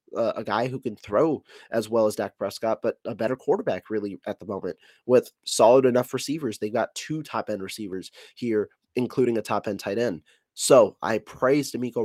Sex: male